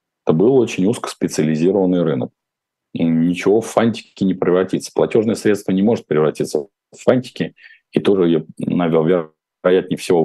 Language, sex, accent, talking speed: Russian, male, native, 135 wpm